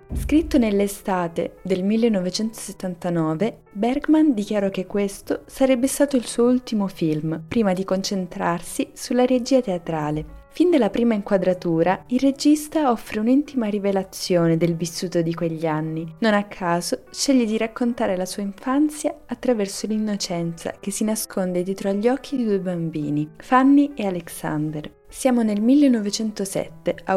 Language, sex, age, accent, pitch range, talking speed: Italian, female, 20-39, native, 180-235 Hz, 135 wpm